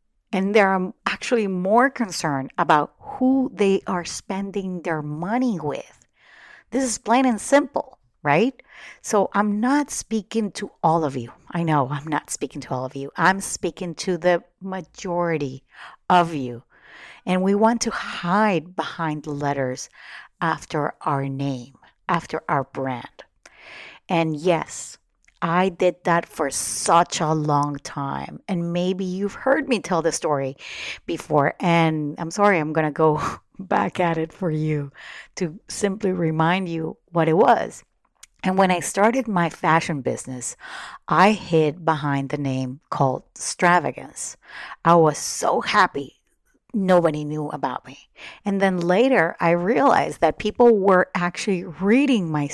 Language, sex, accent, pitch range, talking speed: English, female, American, 155-200 Hz, 145 wpm